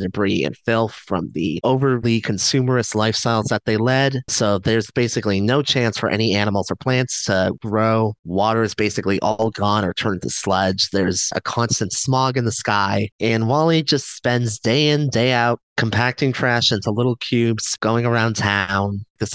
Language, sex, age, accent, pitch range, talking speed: English, male, 30-49, American, 105-125 Hz, 175 wpm